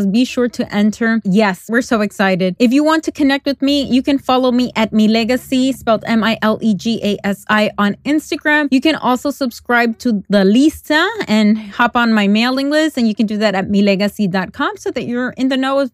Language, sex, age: English, female, 20-39